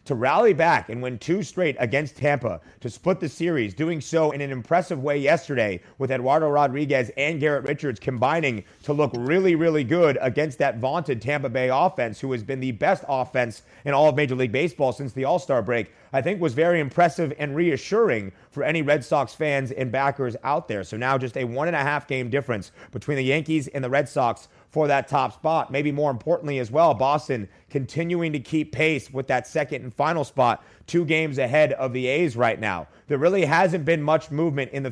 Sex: male